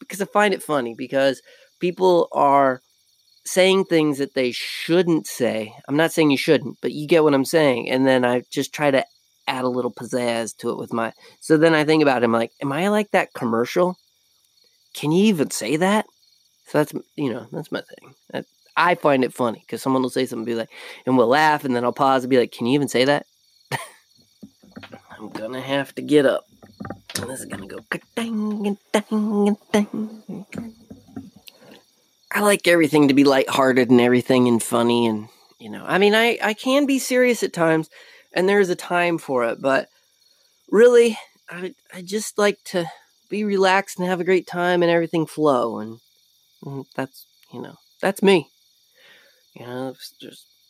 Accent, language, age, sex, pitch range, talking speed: American, English, 30-49, male, 130-195 Hz, 195 wpm